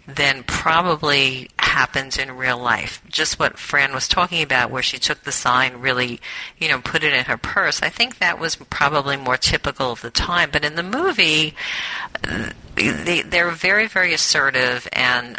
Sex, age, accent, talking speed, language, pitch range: female, 40-59, American, 170 wpm, English, 125-170 Hz